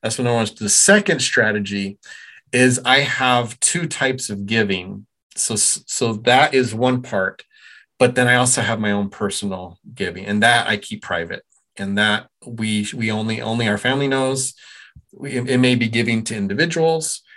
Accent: American